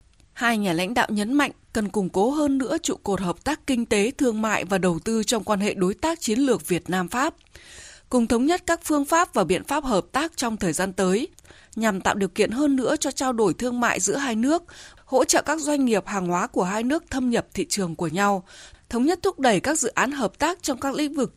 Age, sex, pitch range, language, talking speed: 20-39, female, 195-260 Hz, Vietnamese, 250 wpm